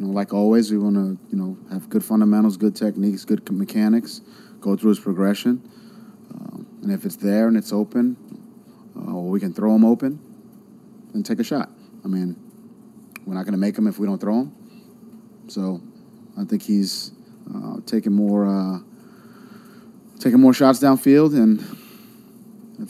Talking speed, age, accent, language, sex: 175 wpm, 30-49, American, English, male